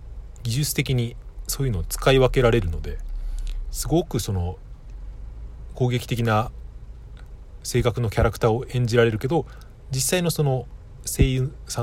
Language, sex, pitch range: Japanese, male, 85-130 Hz